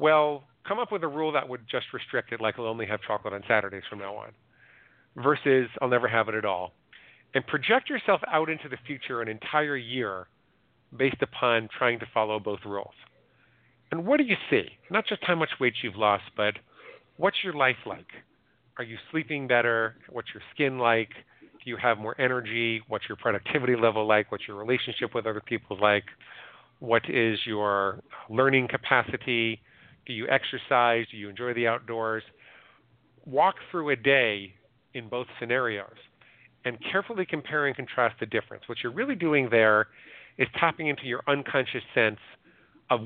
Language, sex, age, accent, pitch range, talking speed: English, male, 40-59, American, 110-140 Hz, 175 wpm